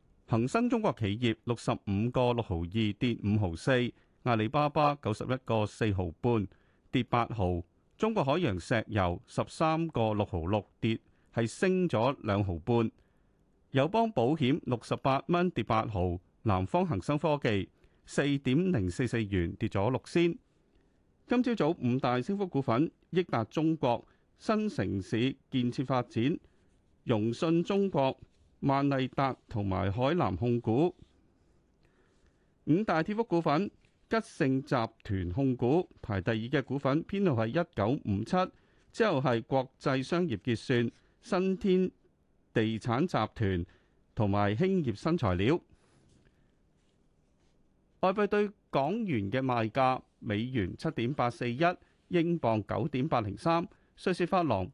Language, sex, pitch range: Chinese, male, 110-160 Hz